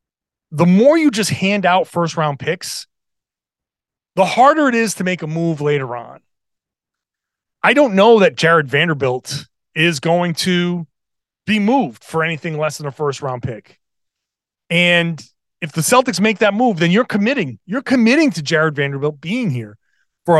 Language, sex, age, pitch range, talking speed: English, male, 30-49, 155-225 Hz, 160 wpm